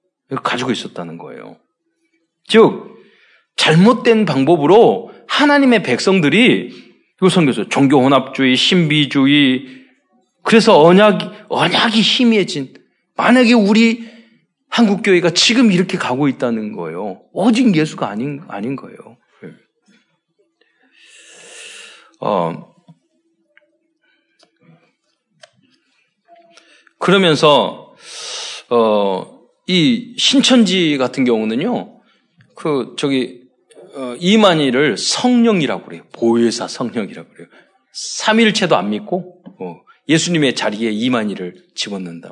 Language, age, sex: Korean, 40-59, male